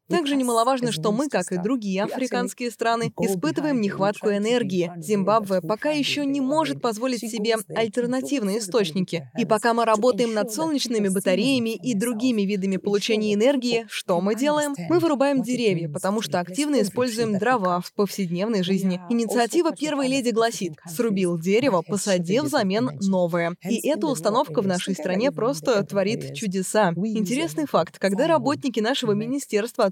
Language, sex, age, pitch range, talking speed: Russian, female, 20-39, 195-250 Hz, 140 wpm